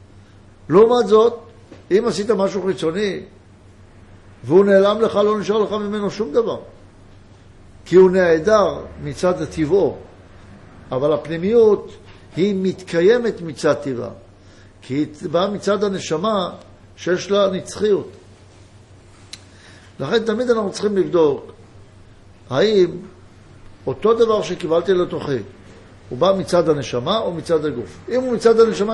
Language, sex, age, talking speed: Hebrew, male, 60-79, 115 wpm